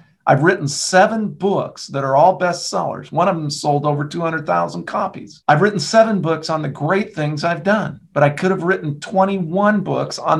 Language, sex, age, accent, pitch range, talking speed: English, male, 50-69, American, 145-185 Hz, 190 wpm